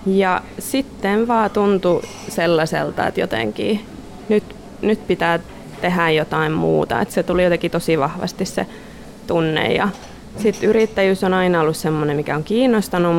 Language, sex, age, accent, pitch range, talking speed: Finnish, female, 20-39, native, 165-205 Hz, 135 wpm